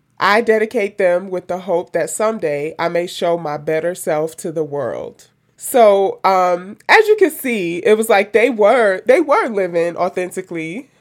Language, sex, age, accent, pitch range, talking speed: English, male, 20-39, American, 170-215 Hz, 175 wpm